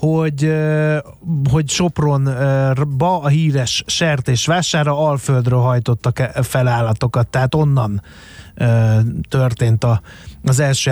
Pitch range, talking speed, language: 125-160 Hz, 105 wpm, Hungarian